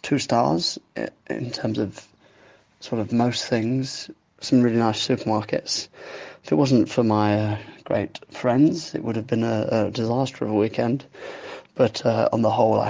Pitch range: 110-125 Hz